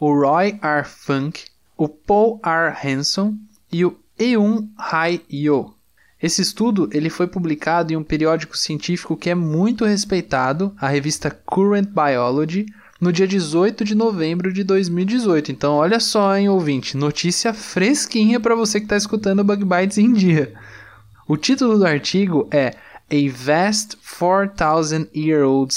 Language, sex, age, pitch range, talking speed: Portuguese, male, 10-29, 150-200 Hz, 140 wpm